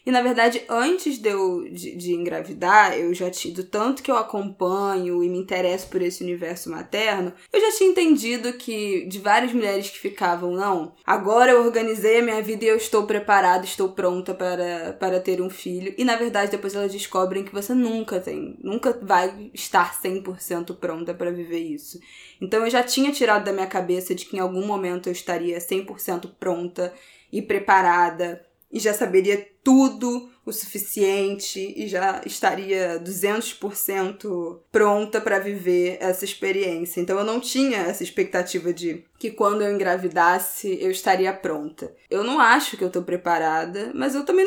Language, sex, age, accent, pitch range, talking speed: Portuguese, female, 20-39, Brazilian, 180-215 Hz, 175 wpm